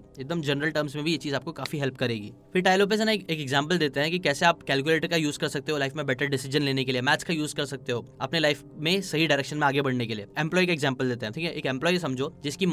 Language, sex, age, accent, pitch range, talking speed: Hindi, male, 10-29, native, 135-170 Hz, 125 wpm